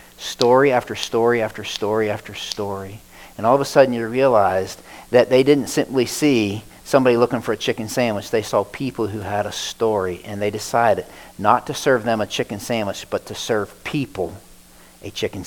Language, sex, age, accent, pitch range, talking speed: English, male, 40-59, American, 100-120 Hz, 185 wpm